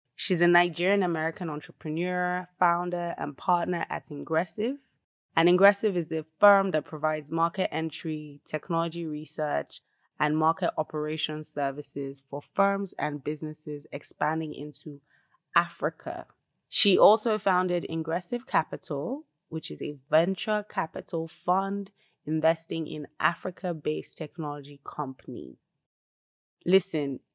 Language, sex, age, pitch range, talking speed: English, female, 20-39, 150-180 Hz, 110 wpm